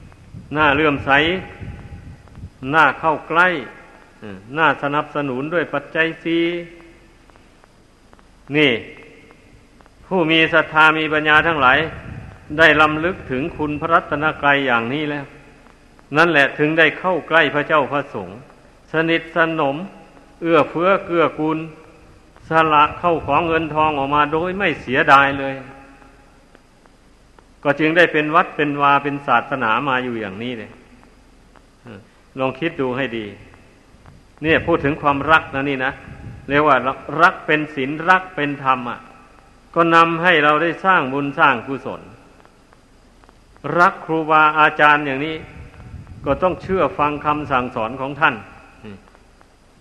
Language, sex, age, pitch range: Thai, male, 60-79, 135-160 Hz